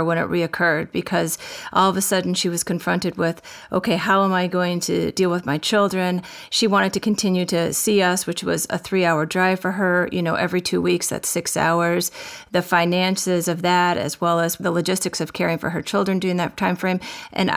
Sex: female